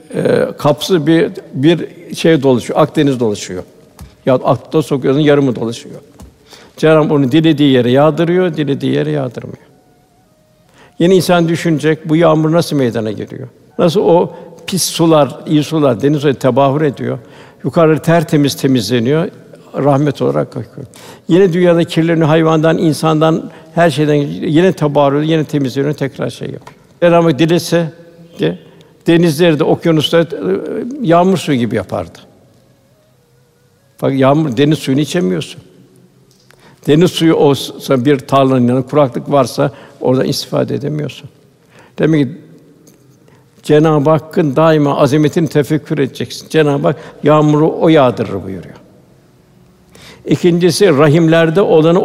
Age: 60-79